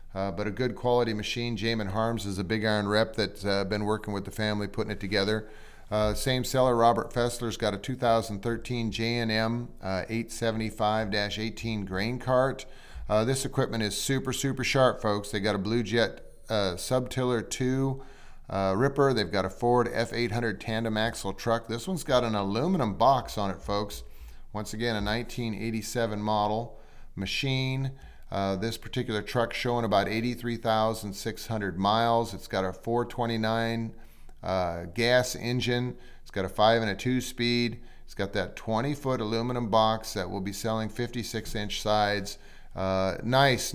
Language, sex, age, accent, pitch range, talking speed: English, male, 40-59, American, 105-120 Hz, 160 wpm